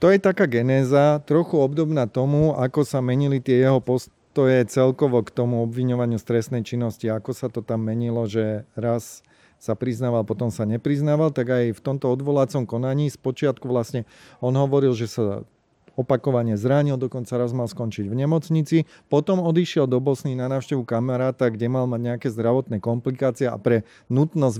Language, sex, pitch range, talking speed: Slovak, male, 120-140 Hz, 165 wpm